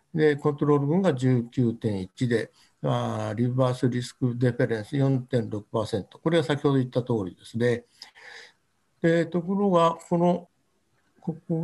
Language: Japanese